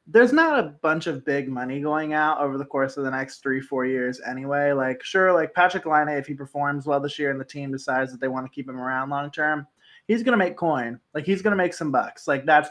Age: 20-39